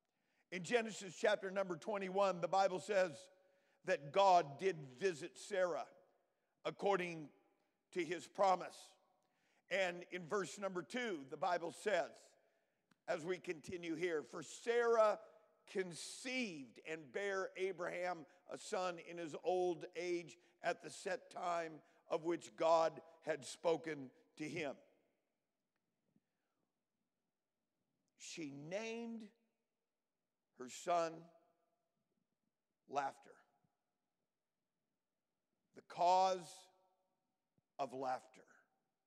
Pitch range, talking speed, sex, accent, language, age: 150-190 Hz, 95 wpm, male, American, English, 50-69